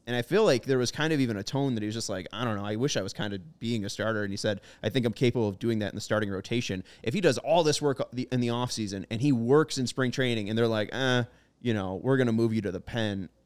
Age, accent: 20-39, American